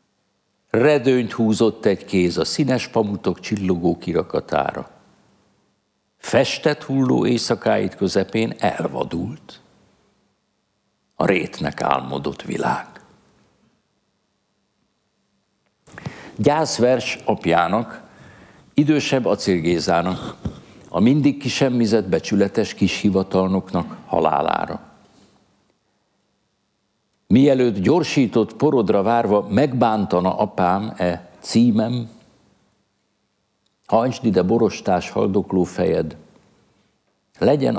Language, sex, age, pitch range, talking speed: Hungarian, male, 60-79, 95-125 Hz, 65 wpm